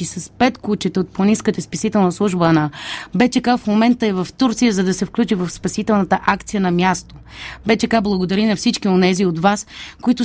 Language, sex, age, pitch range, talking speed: Bulgarian, female, 30-49, 190-230 Hz, 180 wpm